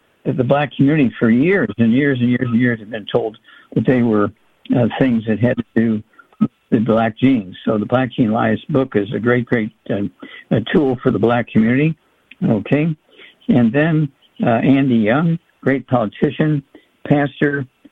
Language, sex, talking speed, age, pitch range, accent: English, male, 175 wpm, 60-79, 115-140 Hz, American